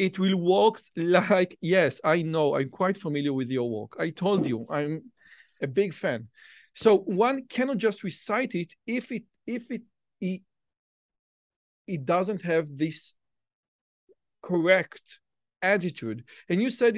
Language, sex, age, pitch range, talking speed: Hebrew, male, 40-59, 165-230 Hz, 140 wpm